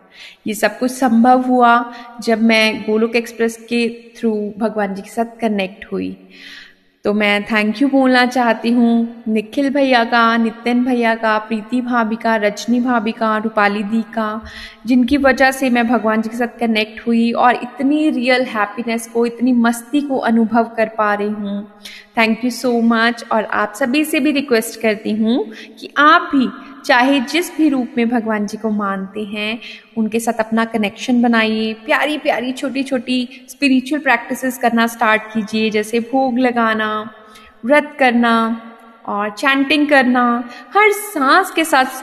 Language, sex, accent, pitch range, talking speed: Hindi, female, native, 220-255 Hz, 160 wpm